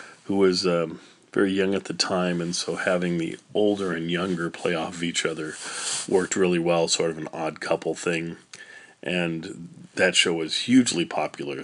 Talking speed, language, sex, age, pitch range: 175 wpm, English, male, 40-59, 80-90 Hz